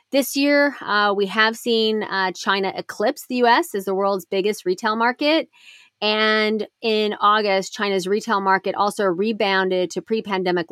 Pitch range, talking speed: 185-235 Hz, 150 wpm